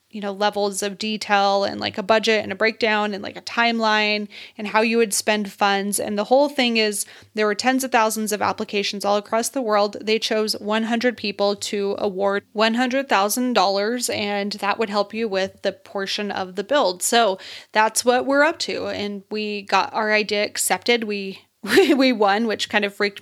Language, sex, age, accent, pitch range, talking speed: English, female, 20-39, American, 200-230 Hz, 195 wpm